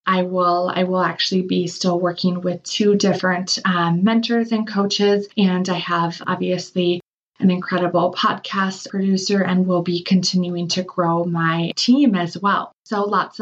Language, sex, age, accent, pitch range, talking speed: English, female, 20-39, American, 180-205 Hz, 155 wpm